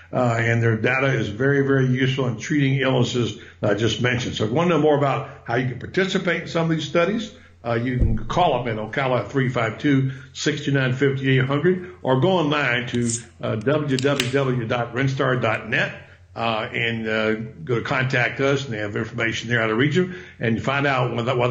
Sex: male